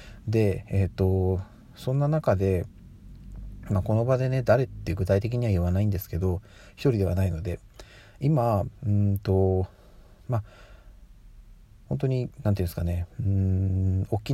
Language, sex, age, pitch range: Japanese, male, 40-59, 95-110 Hz